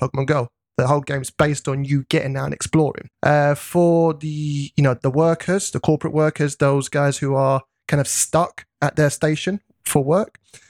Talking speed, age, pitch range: 195 wpm, 20-39, 135-165 Hz